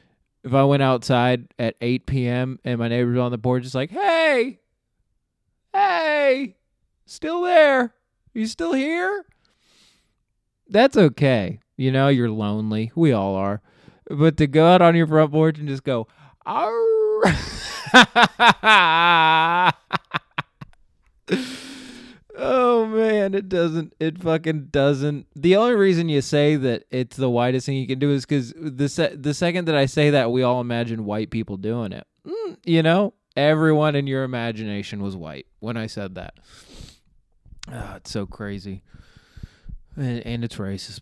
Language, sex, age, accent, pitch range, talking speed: English, male, 20-39, American, 110-165 Hz, 145 wpm